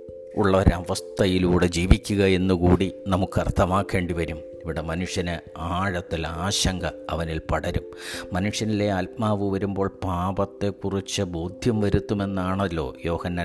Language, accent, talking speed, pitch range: English, Indian, 105 wpm, 85-100 Hz